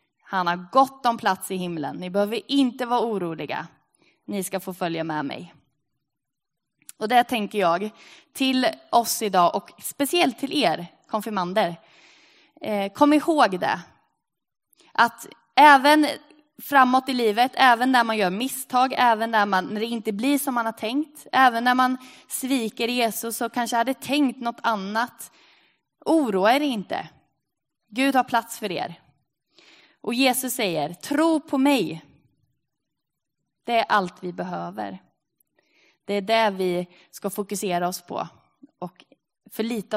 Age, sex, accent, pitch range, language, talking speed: 20-39, female, native, 185-260 Hz, Swedish, 140 wpm